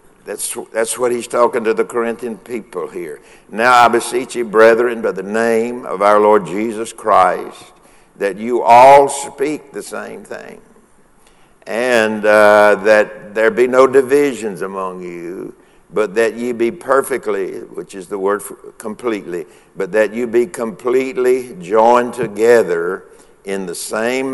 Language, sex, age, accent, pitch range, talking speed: English, male, 60-79, American, 105-145 Hz, 145 wpm